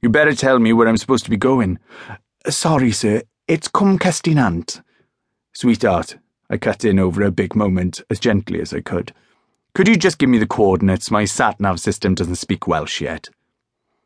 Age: 30-49